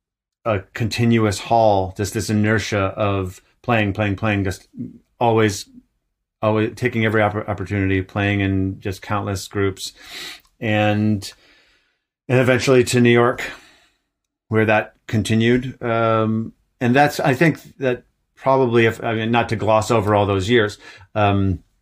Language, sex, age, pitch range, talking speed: English, male, 30-49, 100-115 Hz, 130 wpm